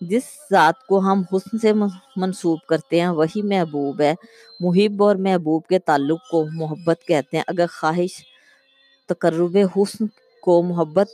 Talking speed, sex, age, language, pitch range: 145 wpm, female, 20-39, Urdu, 155-190 Hz